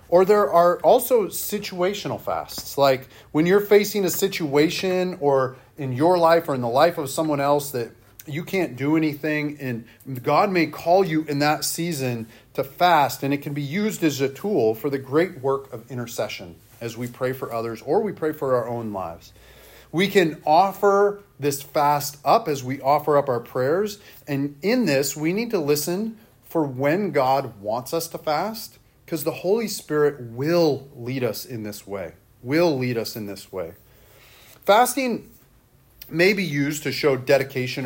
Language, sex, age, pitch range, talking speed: English, male, 30-49, 125-170 Hz, 180 wpm